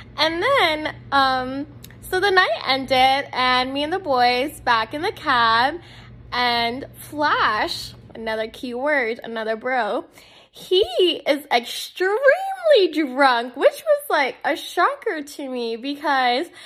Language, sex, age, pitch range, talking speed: English, female, 10-29, 245-335 Hz, 125 wpm